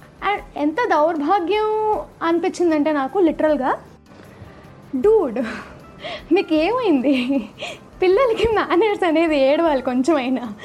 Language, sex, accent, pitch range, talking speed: Telugu, female, native, 285-390 Hz, 80 wpm